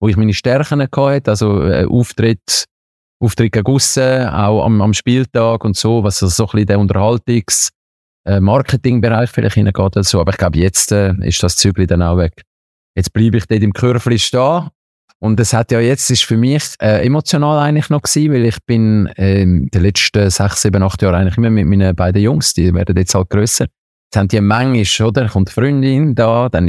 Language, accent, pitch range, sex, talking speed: German, Swiss, 95-125 Hz, male, 205 wpm